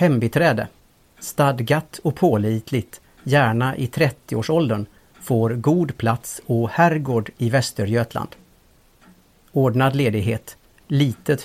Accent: Norwegian